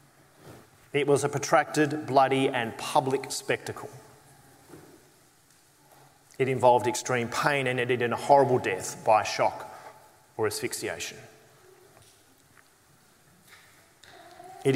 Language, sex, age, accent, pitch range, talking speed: English, male, 30-49, Australian, 135-165 Hz, 100 wpm